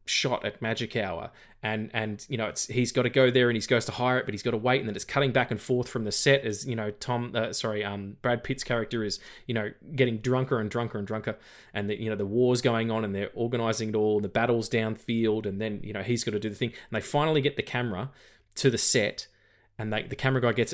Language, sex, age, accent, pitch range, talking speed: English, male, 20-39, Australian, 110-125 Hz, 280 wpm